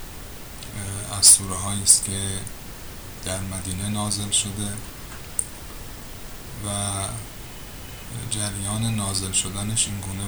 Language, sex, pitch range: Persian, male, 95-105 Hz